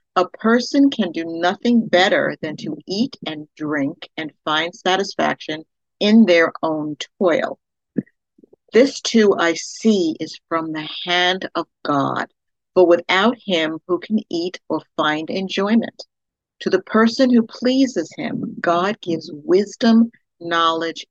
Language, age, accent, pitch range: English, 50-69, American, 160-225 Hz